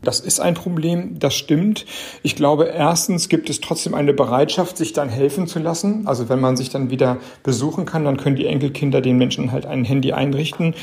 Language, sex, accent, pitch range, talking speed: German, male, German, 130-150 Hz, 205 wpm